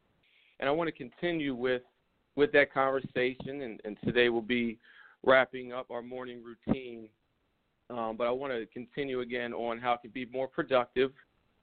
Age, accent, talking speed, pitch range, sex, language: 40-59, American, 170 wpm, 120-140 Hz, male, English